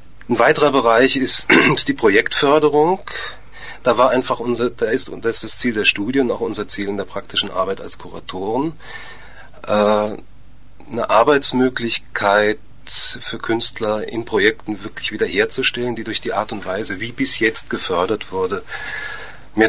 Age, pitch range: 30-49, 100-125 Hz